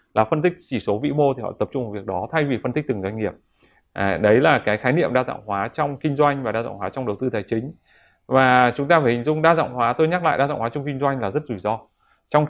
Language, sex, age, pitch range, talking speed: Vietnamese, male, 20-39, 110-150 Hz, 305 wpm